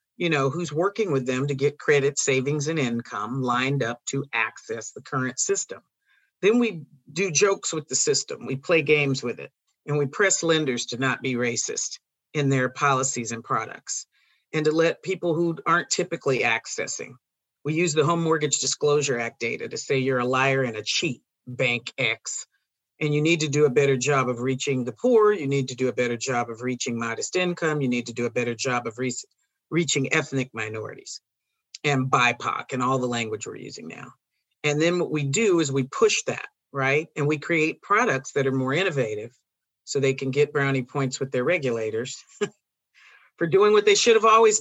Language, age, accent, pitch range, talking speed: English, 40-59, American, 130-165 Hz, 200 wpm